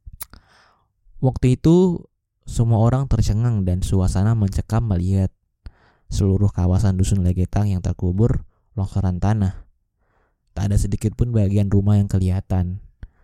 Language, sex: Indonesian, male